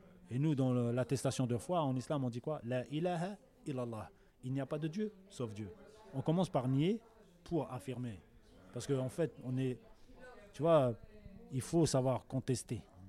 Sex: male